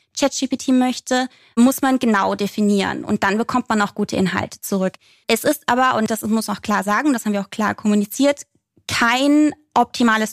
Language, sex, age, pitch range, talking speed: German, female, 20-39, 210-255 Hz, 185 wpm